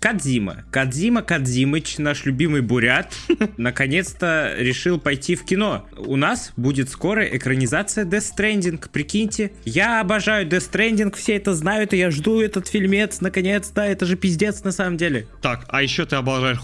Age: 20-39